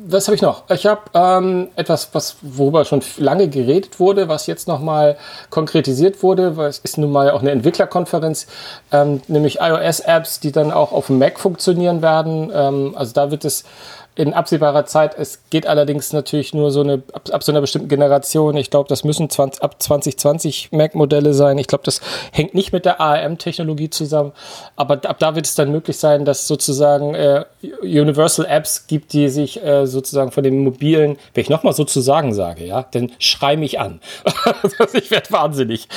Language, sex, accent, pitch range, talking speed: German, male, German, 135-155 Hz, 185 wpm